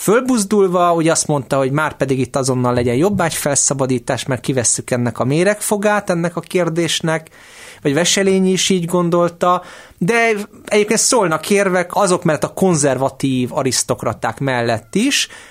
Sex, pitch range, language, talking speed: male, 135-180 Hz, Hungarian, 135 wpm